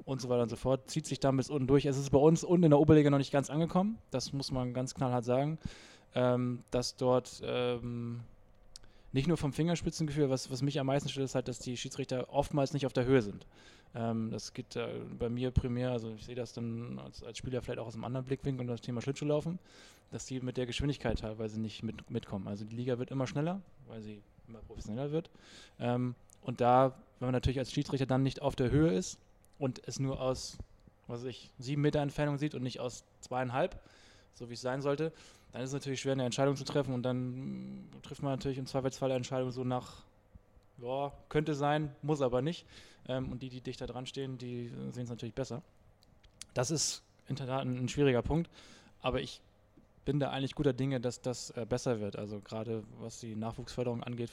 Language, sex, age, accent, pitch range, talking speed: German, male, 20-39, German, 115-135 Hz, 215 wpm